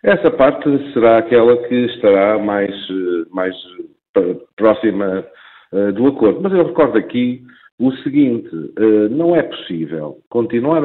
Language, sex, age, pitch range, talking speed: Portuguese, male, 50-69, 115-170 Hz, 115 wpm